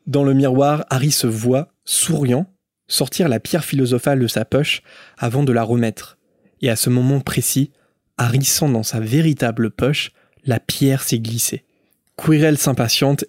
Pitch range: 120-145 Hz